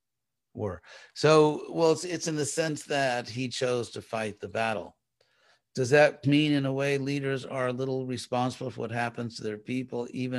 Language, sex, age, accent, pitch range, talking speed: English, male, 50-69, American, 115-145 Hz, 190 wpm